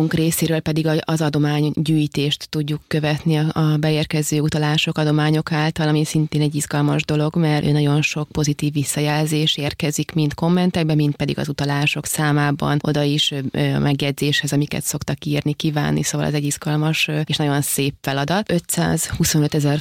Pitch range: 150-160 Hz